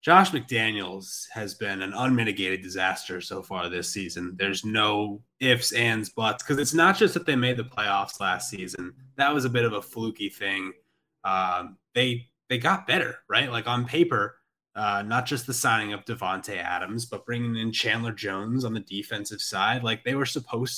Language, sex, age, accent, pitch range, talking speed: English, male, 20-39, American, 110-140 Hz, 190 wpm